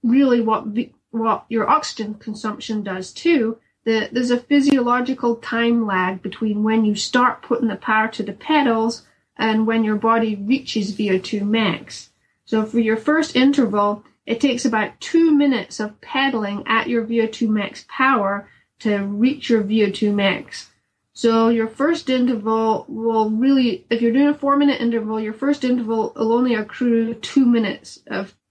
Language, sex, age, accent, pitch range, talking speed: English, female, 30-49, American, 215-250 Hz, 160 wpm